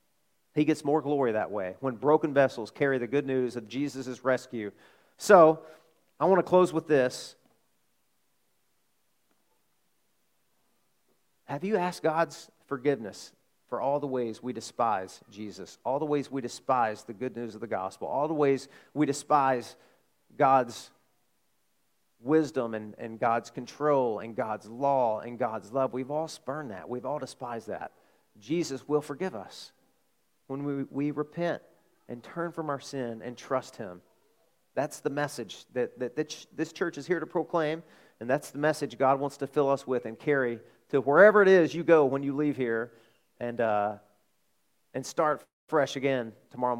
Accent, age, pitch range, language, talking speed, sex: American, 40-59, 125-155 Hz, English, 165 wpm, male